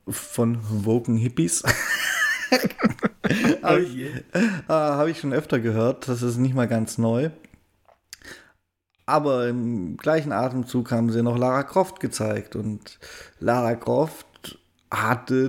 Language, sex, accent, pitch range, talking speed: German, male, German, 115-170 Hz, 120 wpm